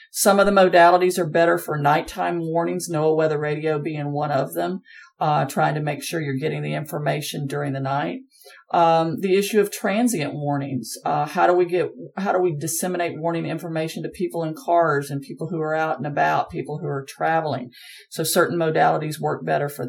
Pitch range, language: 150-175 Hz, English